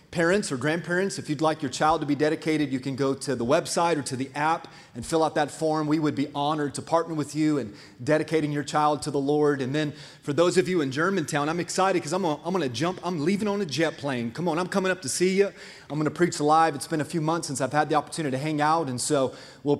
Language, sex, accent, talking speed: English, male, American, 275 wpm